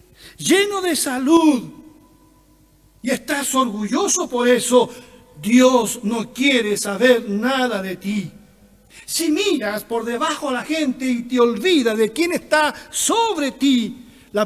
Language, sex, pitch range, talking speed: Spanish, male, 205-265 Hz, 130 wpm